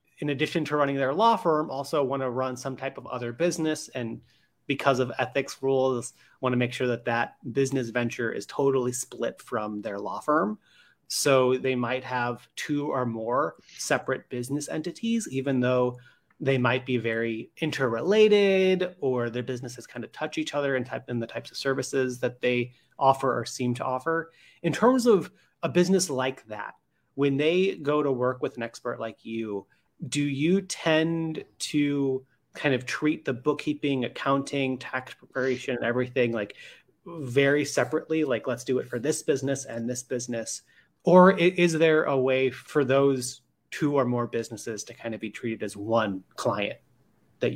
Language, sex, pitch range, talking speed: English, male, 125-150 Hz, 175 wpm